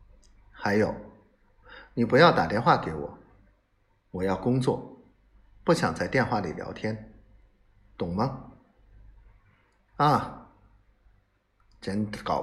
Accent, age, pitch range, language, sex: native, 50-69, 100-150 Hz, Chinese, male